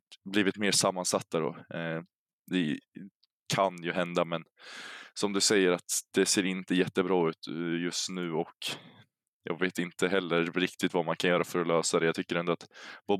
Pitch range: 85-90 Hz